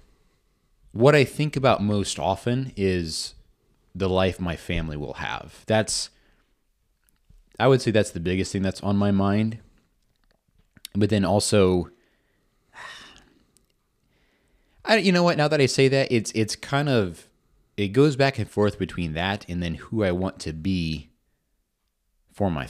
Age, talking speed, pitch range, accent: 30-49, 150 wpm, 90-120 Hz, American